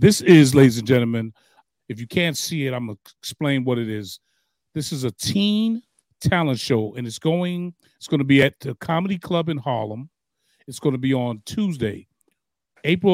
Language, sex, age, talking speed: English, male, 40-59, 195 wpm